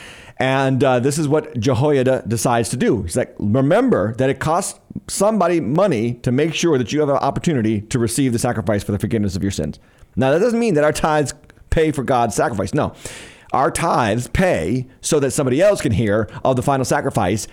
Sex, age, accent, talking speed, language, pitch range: male, 40-59, American, 205 wpm, English, 110-150 Hz